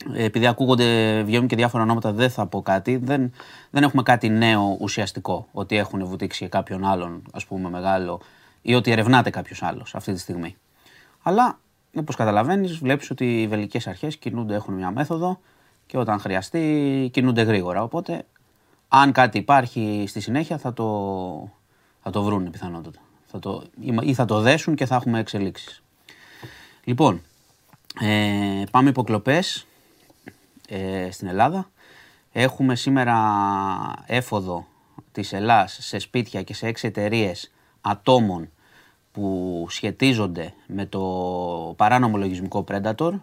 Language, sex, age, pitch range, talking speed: Greek, male, 30-49, 95-125 Hz, 130 wpm